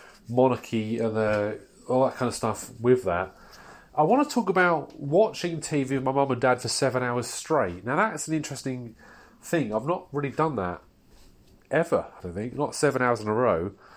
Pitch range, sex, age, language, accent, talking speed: 115-160 Hz, male, 30-49, English, British, 200 wpm